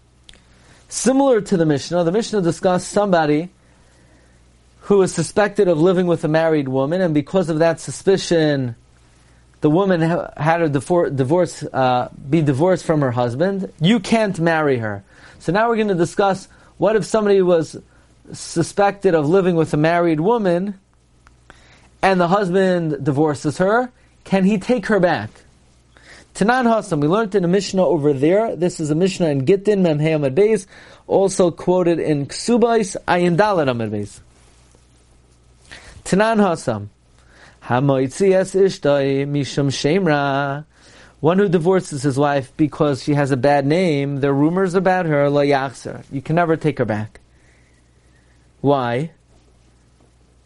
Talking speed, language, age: 130 wpm, English, 40-59